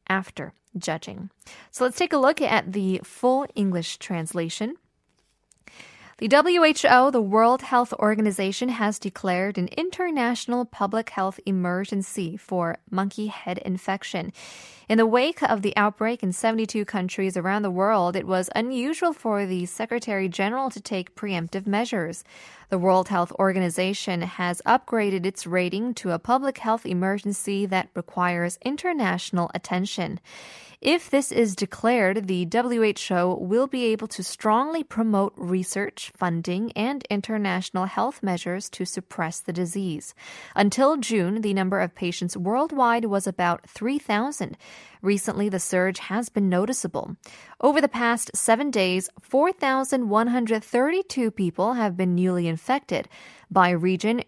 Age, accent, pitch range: 10-29, American, 185-235 Hz